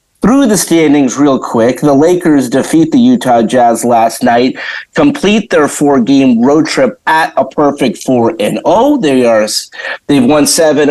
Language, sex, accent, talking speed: English, male, American, 165 wpm